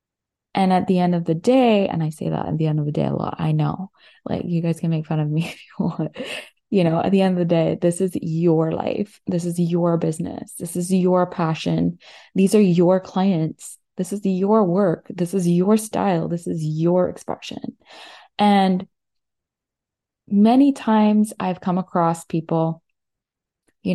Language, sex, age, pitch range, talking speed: English, female, 20-39, 165-195 Hz, 190 wpm